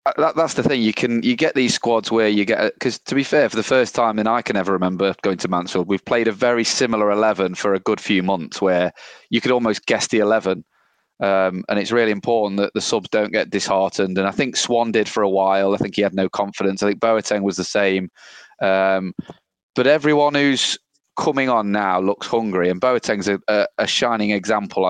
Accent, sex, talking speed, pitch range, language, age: British, male, 225 wpm, 100-115 Hz, English, 20-39